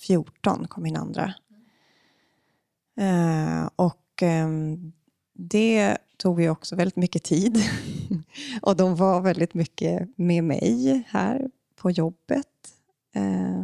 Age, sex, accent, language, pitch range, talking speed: 30-49, female, native, Swedish, 165-200 Hz, 105 wpm